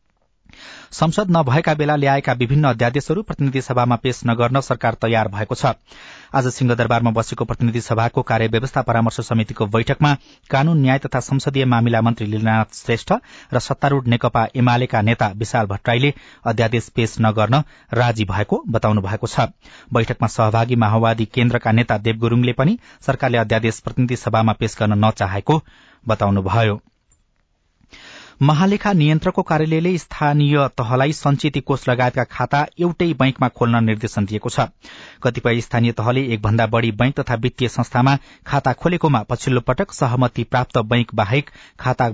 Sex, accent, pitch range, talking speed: male, Indian, 115-135 Hz, 120 wpm